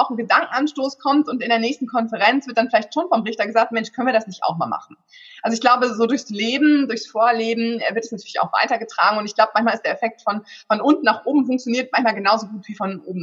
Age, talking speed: 20-39, 255 wpm